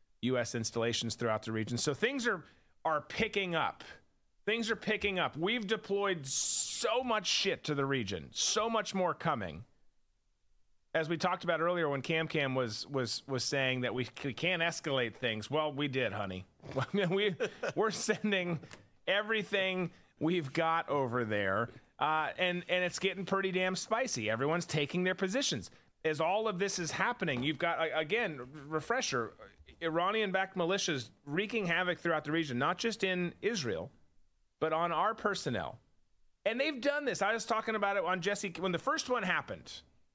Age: 30-49